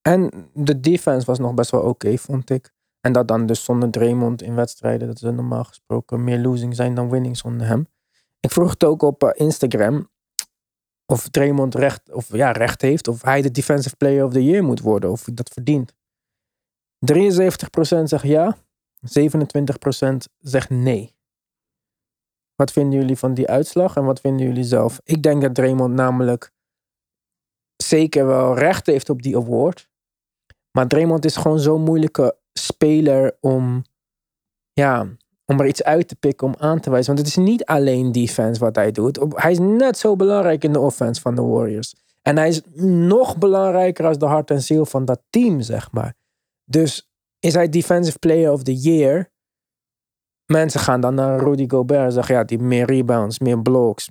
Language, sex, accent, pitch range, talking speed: Dutch, male, Dutch, 125-155 Hz, 180 wpm